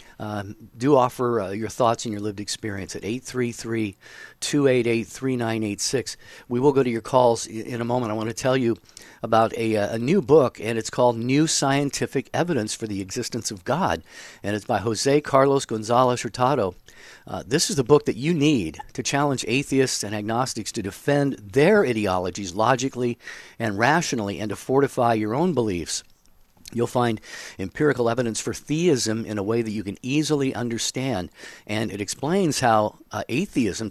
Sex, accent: male, American